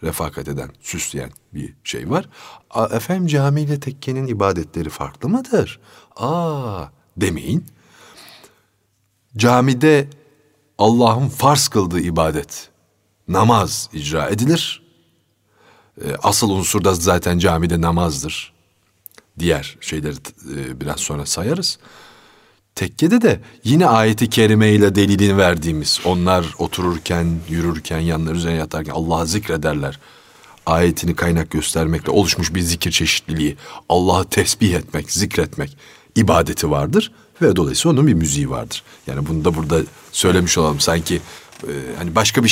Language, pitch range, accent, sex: Turkish, 80-115 Hz, native, male